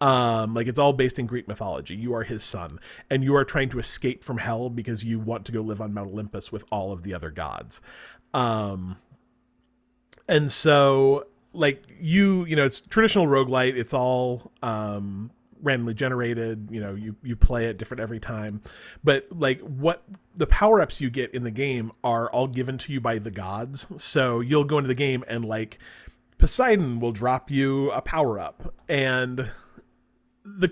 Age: 30-49